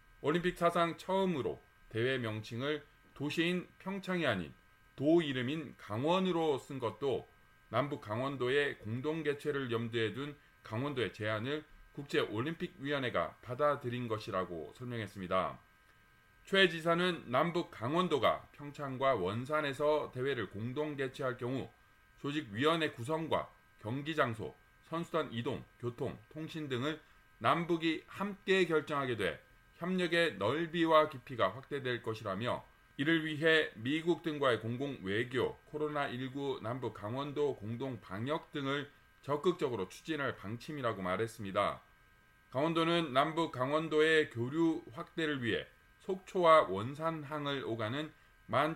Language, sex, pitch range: Korean, male, 120-160 Hz